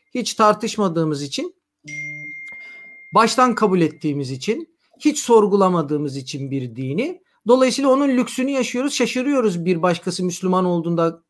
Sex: male